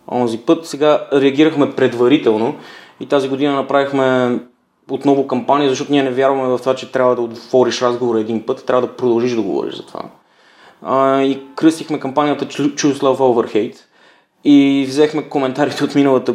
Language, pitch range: Bulgarian, 115-140 Hz